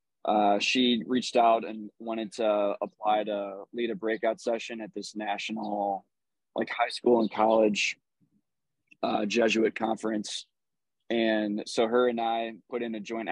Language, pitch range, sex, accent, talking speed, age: English, 105-115 Hz, male, American, 150 wpm, 20-39